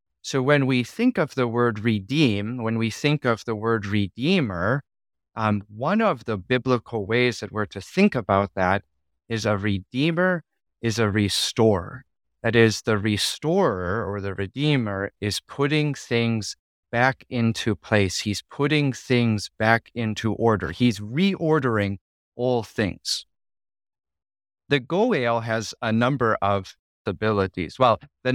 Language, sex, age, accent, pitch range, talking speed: English, male, 30-49, American, 105-130 Hz, 135 wpm